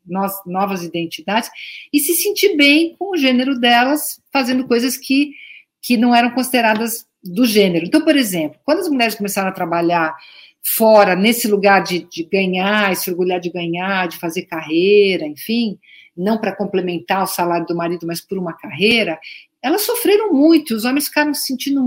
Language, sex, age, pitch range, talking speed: Portuguese, female, 50-69, 185-250 Hz, 170 wpm